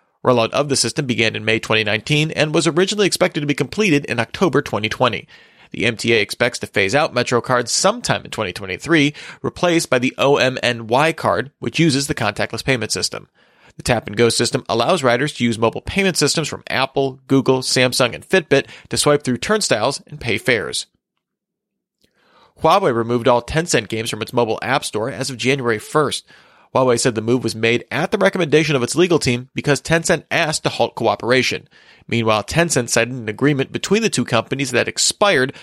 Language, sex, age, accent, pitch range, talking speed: English, male, 40-59, American, 120-150 Hz, 180 wpm